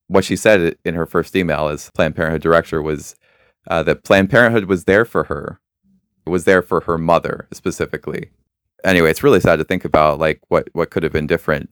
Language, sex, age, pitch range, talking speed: English, male, 20-39, 80-85 Hz, 210 wpm